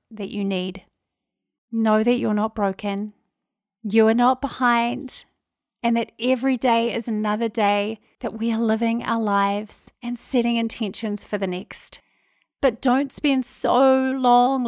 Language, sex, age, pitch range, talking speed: English, female, 30-49, 205-240 Hz, 145 wpm